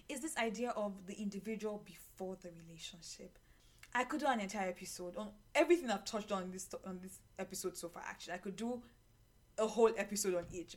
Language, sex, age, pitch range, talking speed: English, female, 10-29, 200-265 Hz, 195 wpm